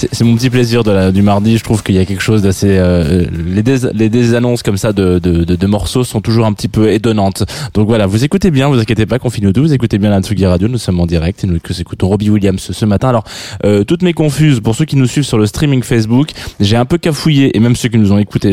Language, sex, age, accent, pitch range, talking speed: French, male, 20-39, French, 95-125 Hz, 280 wpm